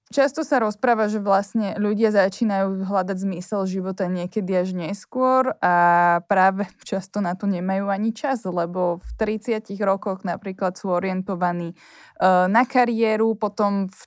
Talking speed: 135 wpm